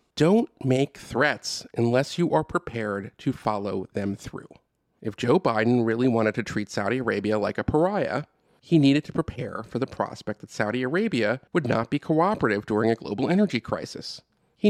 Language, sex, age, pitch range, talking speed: English, male, 40-59, 110-150 Hz, 175 wpm